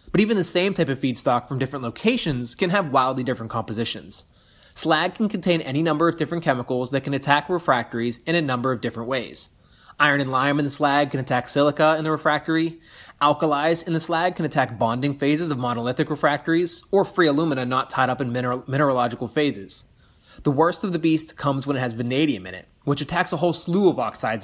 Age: 20-39